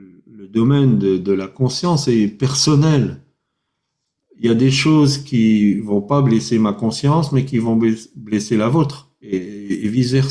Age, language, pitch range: 50-69, French, 100-140 Hz